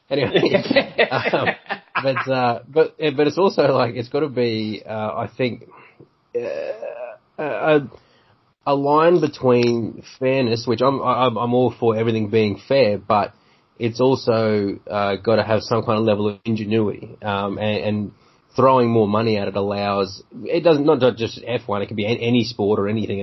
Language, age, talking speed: English, 20-39, 170 wpm